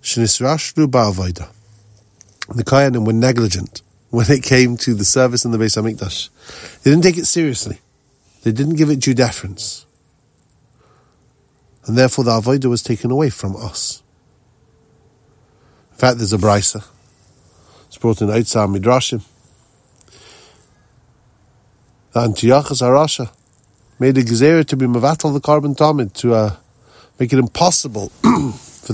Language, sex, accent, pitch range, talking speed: English, male, Irish, 110-130 Hz, 130 wpm